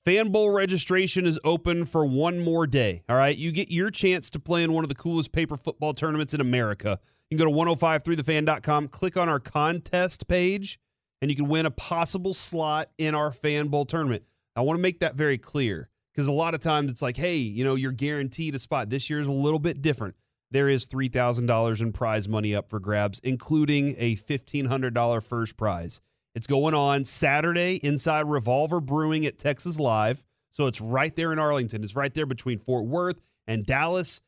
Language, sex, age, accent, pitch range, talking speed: English, male, 30-49, American, 125-165 Hz, 200 wpm